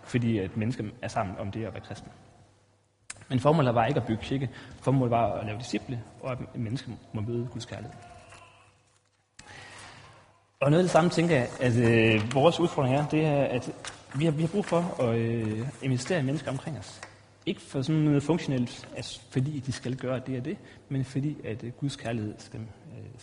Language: Danish